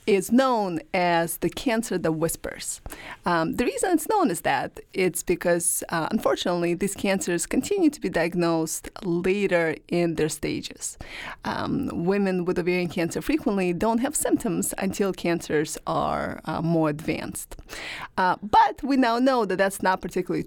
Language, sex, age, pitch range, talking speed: English, female, 30-49, 170-225 Hz, 150 wpm